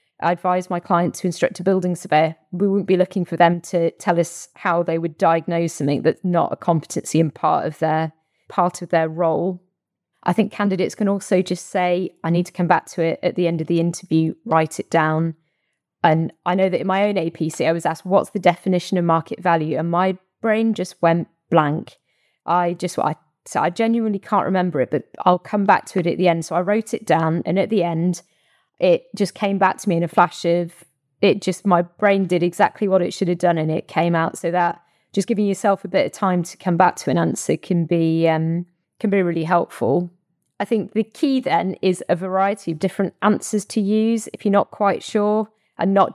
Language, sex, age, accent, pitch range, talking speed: English, female, 20-39, British, 170-195 Hz, 230 wpm